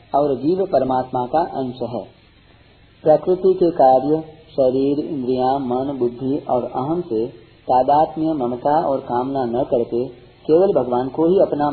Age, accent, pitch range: 40-59, native, 125-160 Hz